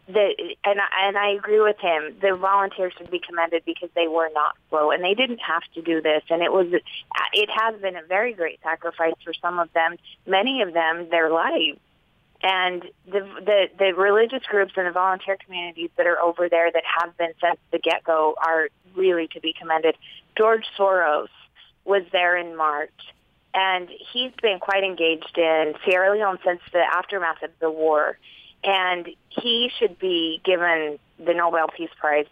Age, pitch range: 30-49, 165-200 Hz